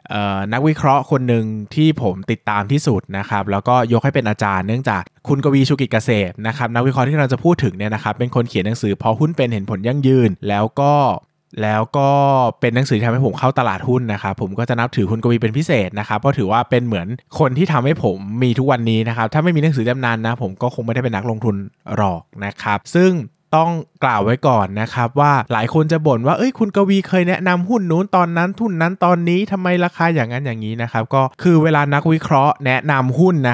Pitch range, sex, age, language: 115-150 Hz, male, 20-39, Thai